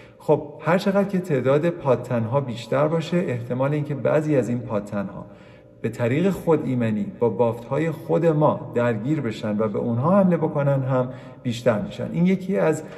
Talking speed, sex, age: 170 wpm, male, 40-59